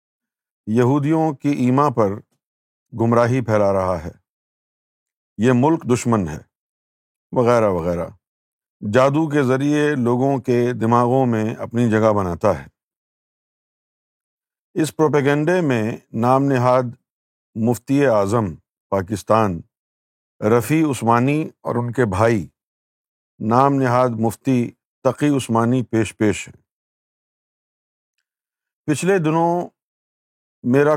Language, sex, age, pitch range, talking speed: Urdu, male, 50-69, 110-135 Hz, 95 wpm